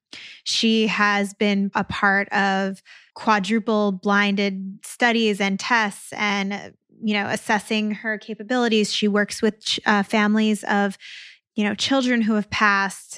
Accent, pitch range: American, 200-225 Hz